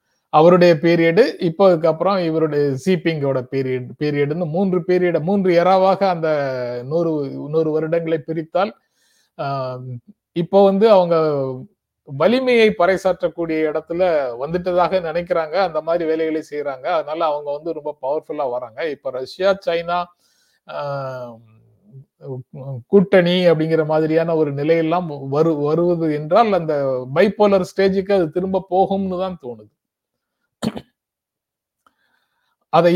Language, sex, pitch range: Tamil, male, 135-180 Hz